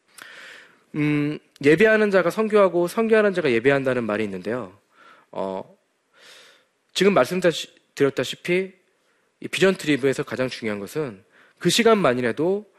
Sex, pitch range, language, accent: male, 125-195 Hz, Korean, native